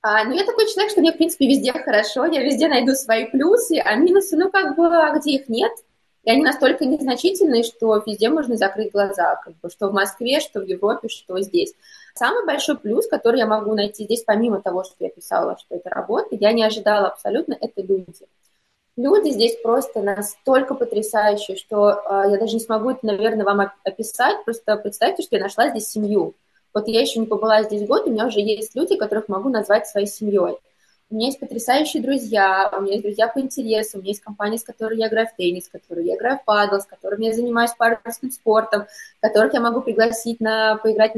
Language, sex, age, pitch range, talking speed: Russian, female, 20-39, 210-260 Hz, 205 wpm